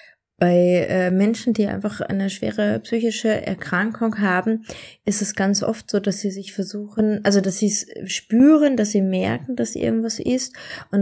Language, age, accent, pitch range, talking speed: German, 20-39, German, 175-210 Hz, 170 wpm